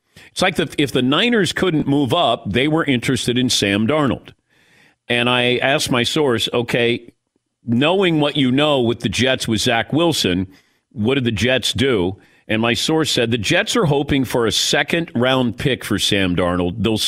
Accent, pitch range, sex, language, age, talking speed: American, 95-130 Hz, male, English, 50-69, 185 wpm